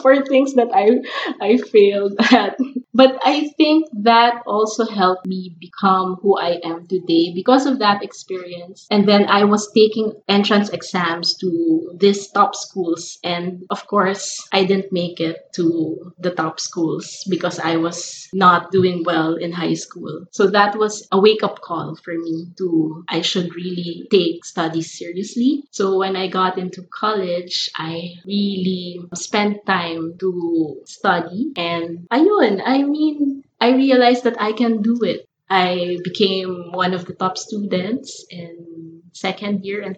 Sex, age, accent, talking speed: female, 20-39, Filipino, 155 wpm